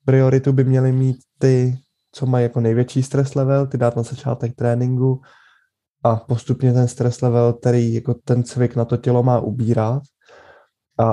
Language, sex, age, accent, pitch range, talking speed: Czech, male, 20-39, native, 120-135 Hz, 165 wpm